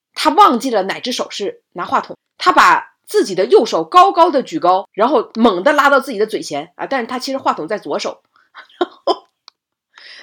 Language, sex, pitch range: Chinese, female, 210-330 Hz